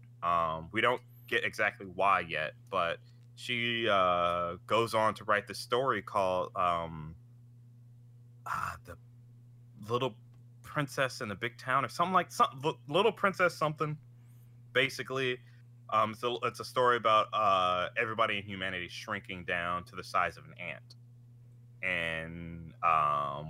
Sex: male